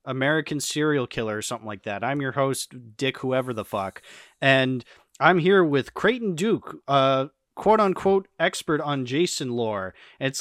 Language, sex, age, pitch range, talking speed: English, male, 20-39, 120-150 Hz, 165 wpm